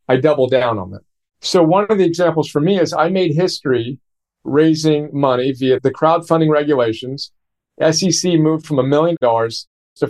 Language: English